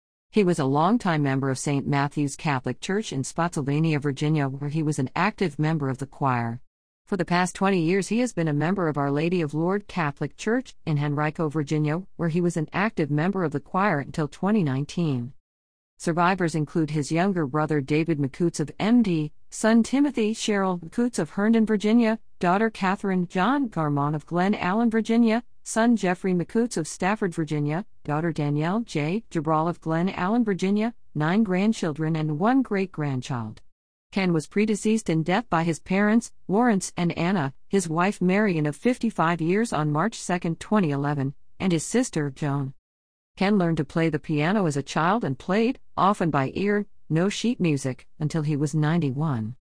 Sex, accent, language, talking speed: female, American, English, 170 wpm